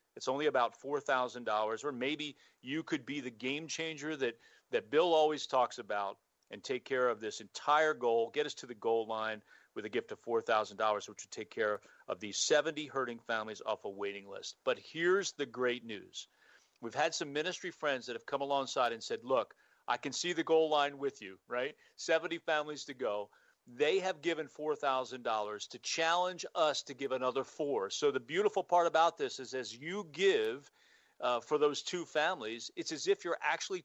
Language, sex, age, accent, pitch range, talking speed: English, male, 40-59, American, 125-175 Hz, 205 wpm